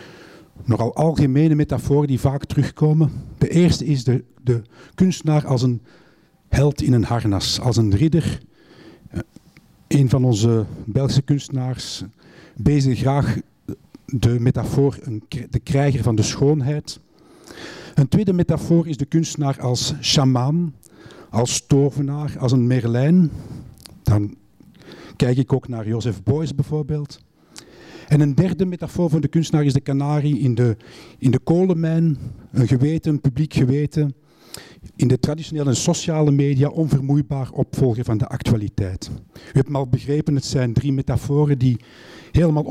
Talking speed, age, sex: 135 wpm, 50-69, male